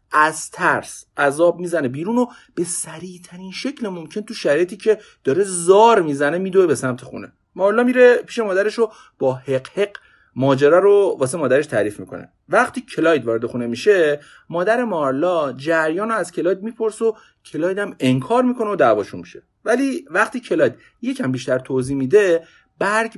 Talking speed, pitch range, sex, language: 155 wpm, 140-220 Hz, male, Persian